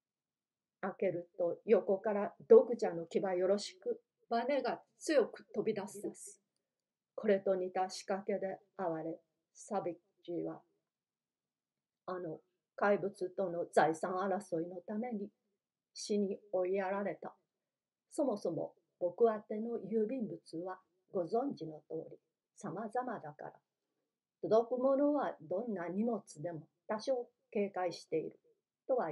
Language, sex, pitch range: Japanese, female, 180-235 Hz